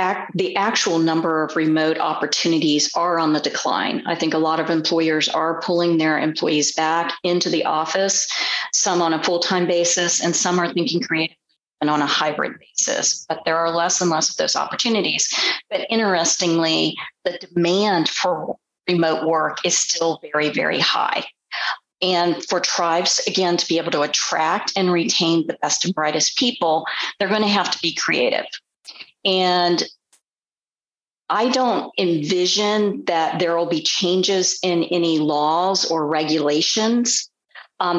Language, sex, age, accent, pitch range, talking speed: English, female, 40-59, American, 160-185 Hz, 155 wpm